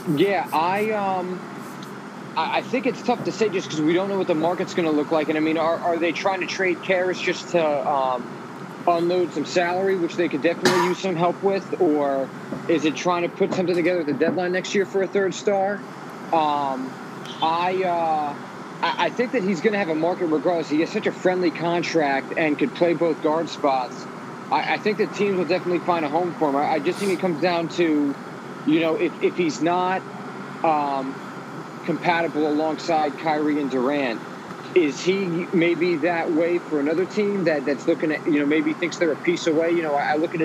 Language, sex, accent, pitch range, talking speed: English, male, American, 155-180 Hz, 215 wpm